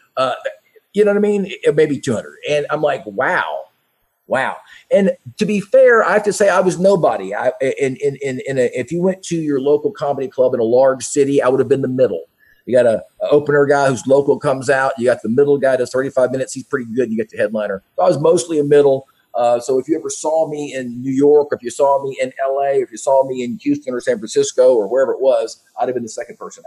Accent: American